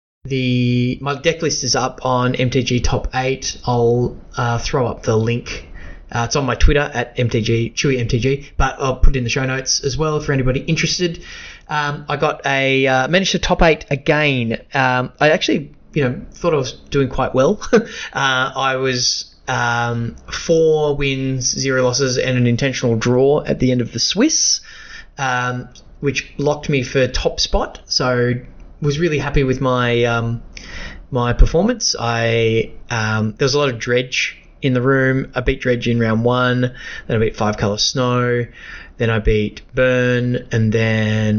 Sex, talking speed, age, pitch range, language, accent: male, 175 wpm, 20-39, 120-140 Hz, English, Australian